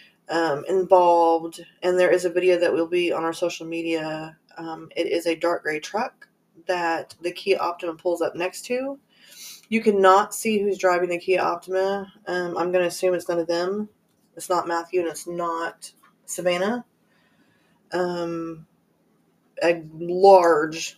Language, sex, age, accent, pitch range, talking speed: English, female, 20-39, American, 165-185 Hz, 155 wpm